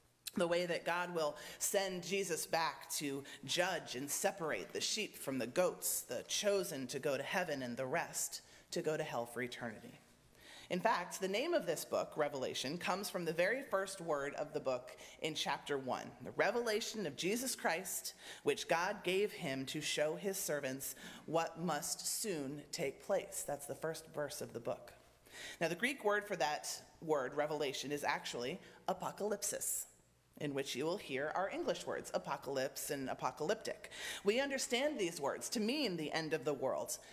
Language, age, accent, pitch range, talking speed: English, 30-49, American, 150-205 Hz, 180 wpm